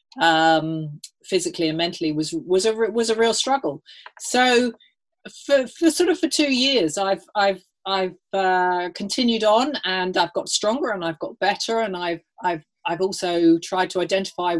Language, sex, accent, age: English, female, British, 40-59